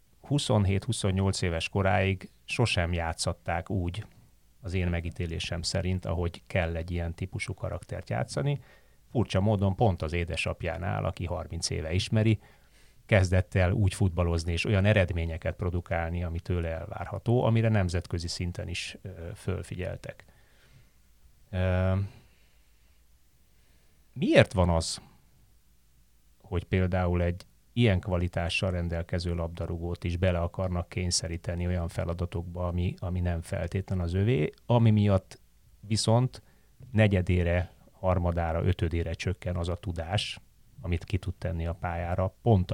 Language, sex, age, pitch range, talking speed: Hungarian, male, 30-49, 85-105 Hz, 110 wpm